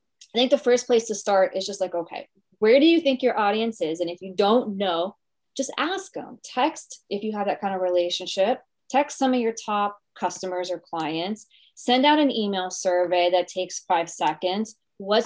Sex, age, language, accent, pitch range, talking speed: female, 20-39, English, American, 190-235 Hz, 205 wpm